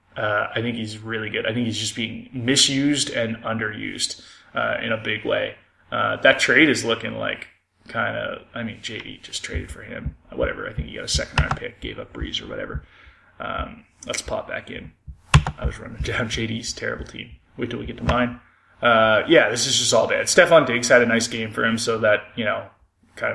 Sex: male